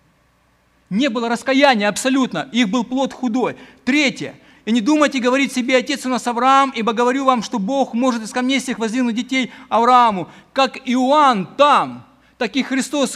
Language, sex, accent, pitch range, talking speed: Ukrainian, male, native, 210-255 Hz, 165 wpm